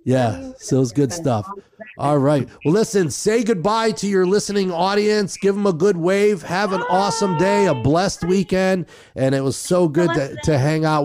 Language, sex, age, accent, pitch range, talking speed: English, male, 40-59, American, 115-165 Hz, 195 wpm